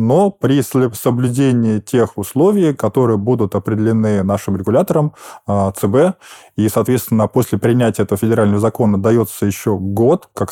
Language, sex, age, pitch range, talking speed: Russian, male, 20-39, 100-120 Hz, 125 wpm